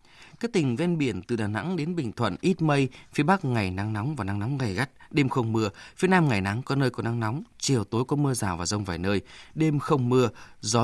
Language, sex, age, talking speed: Vietnamese, male, 20-39, 260 wpm